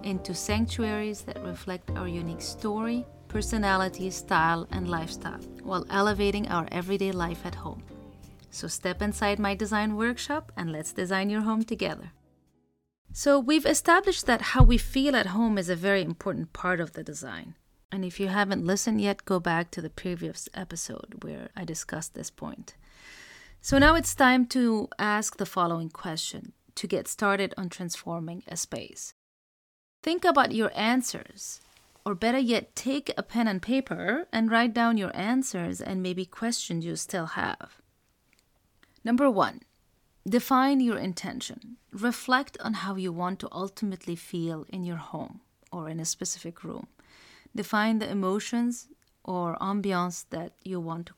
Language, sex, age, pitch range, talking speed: English, female, 30-49, 175-230 Hz, 155 wpm